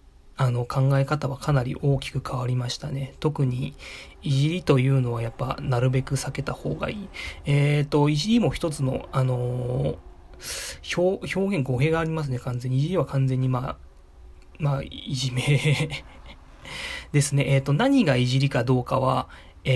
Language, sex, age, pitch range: Japanese, male, 20-39, 120-145 Hz